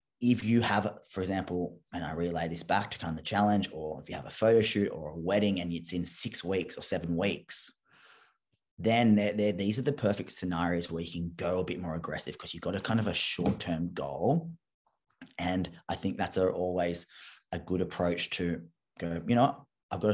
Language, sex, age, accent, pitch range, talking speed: English, male, 20-39, Australian, 85-100 Hz, 220 wpm